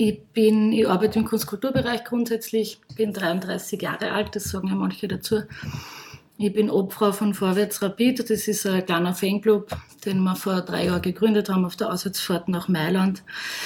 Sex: female